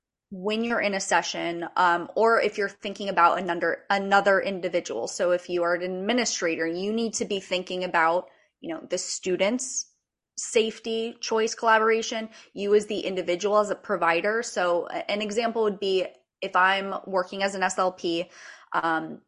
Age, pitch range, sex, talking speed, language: 20-39, 175-220 Hz, female, 160 wpm, English